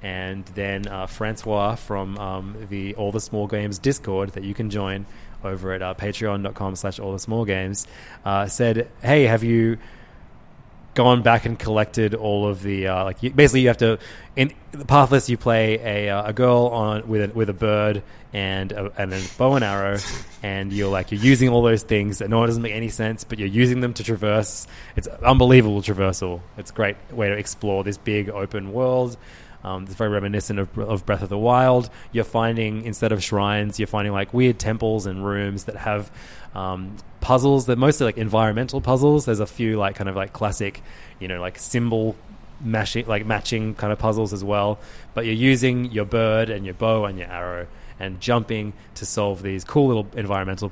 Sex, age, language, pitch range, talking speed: male, 20-39, English, 100-115 Hz, 200 wpm